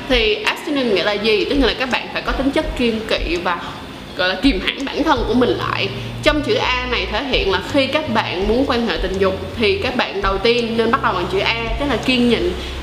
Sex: female